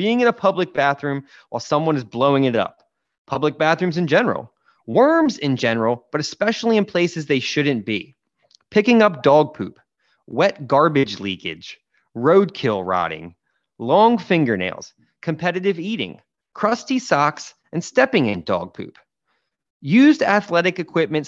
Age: 30-49